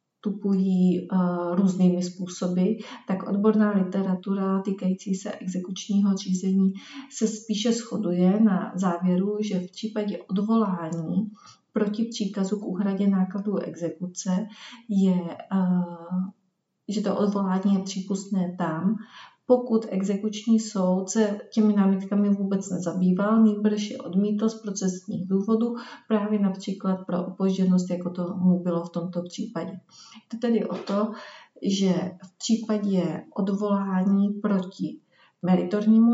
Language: Czech